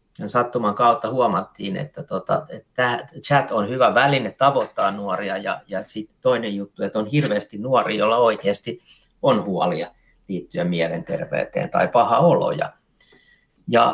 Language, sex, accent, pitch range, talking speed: Finnish, male, native, 105-140 Hz, 130 wpm